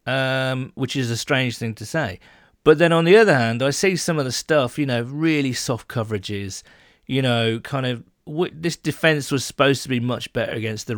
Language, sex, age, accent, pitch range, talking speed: English, male, 40-59, British, 110-145 Hz, 220 wpm